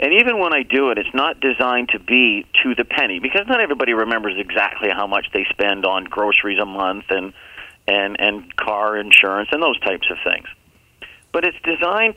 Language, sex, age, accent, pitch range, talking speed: English, male, 40-59, American, 110-145 Hz, 195 wpm